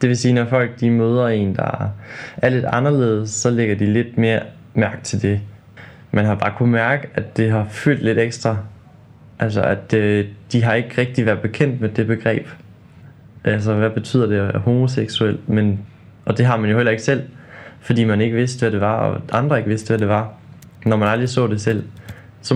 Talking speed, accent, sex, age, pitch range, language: 210 wpm, native, male, 20-39, 105-120 Hz, Danish